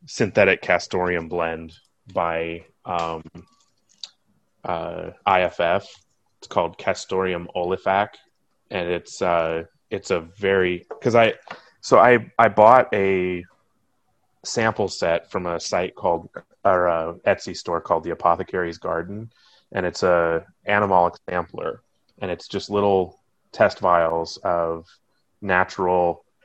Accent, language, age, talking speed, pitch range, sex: American, English, 30-49, 115 wpm, 85-95 Hz, male